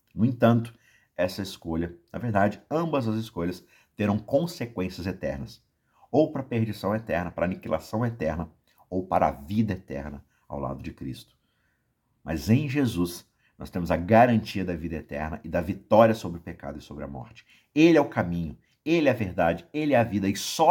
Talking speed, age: 180 wpm, 50-69